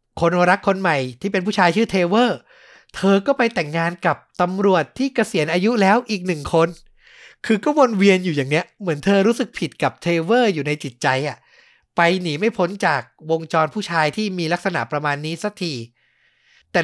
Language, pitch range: Thai, 135-190 Hz